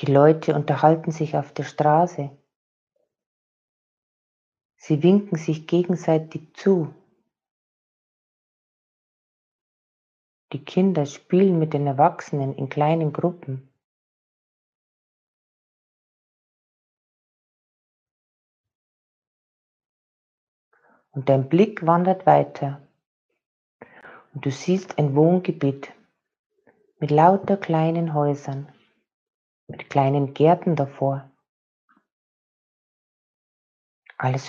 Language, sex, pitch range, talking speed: German, female, 140-170 Hz, 70 wpm